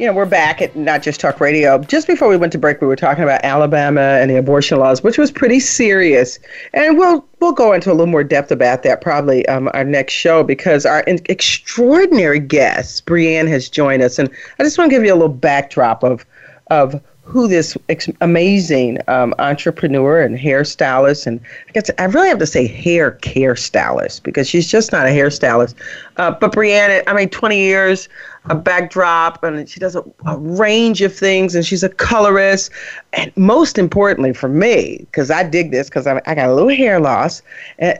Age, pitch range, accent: 40-59, 140-200 Hz, American